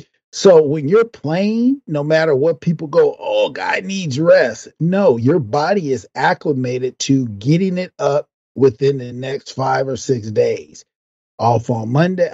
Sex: male